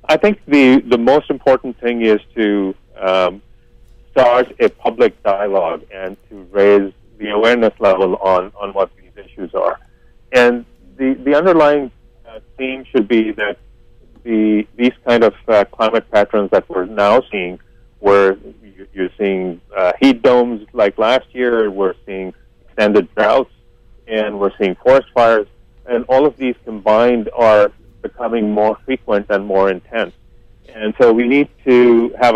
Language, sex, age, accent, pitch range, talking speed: English, male, 40-59, American, 100-120 Hz, 150 wpm